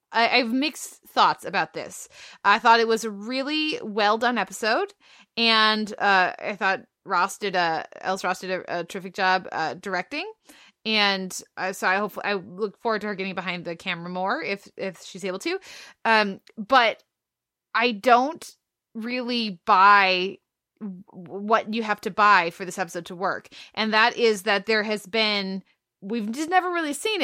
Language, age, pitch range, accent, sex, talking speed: English, 20-39, 190-235 Hz, American, female, 175 wpm